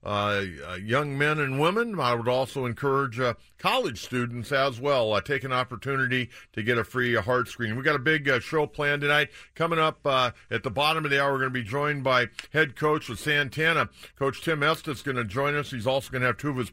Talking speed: 240 wpm